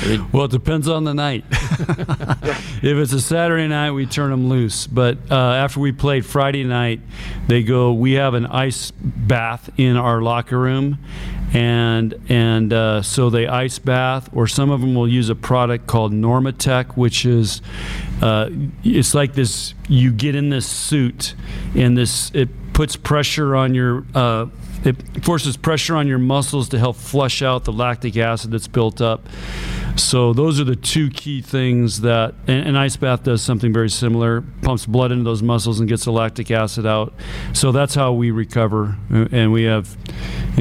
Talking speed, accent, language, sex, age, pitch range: 175 wpm, American, English, male, 40-59, 115-135 Hz